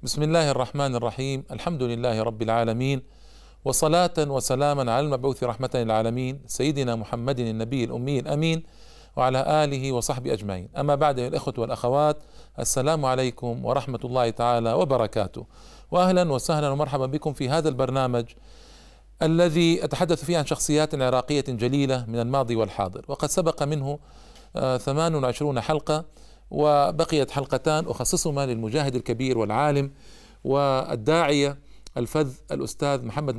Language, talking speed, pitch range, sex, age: Arabic, 115 wpm, 125-155 Hz, male, 50-69